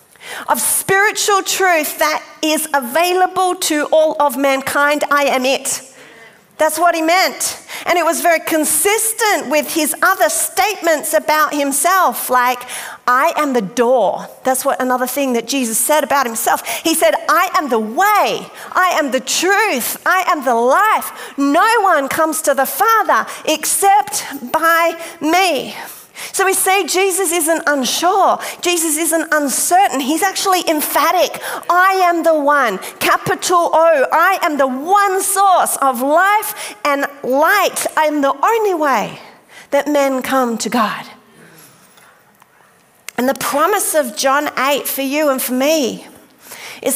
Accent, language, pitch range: Australian, English, 275-360 Hz